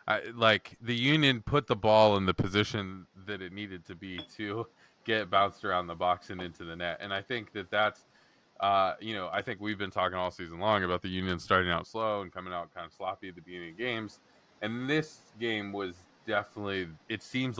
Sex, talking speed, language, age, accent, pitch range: male, 220 wpm, English, 20-39, American, 90-105 Hz